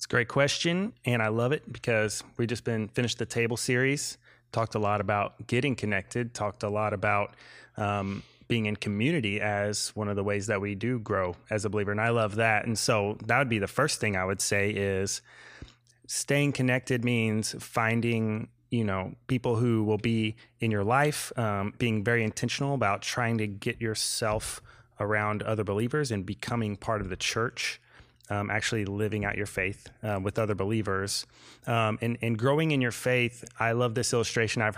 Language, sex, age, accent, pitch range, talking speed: English, male, 30-49, American, 105-125 Hz, 190 wpm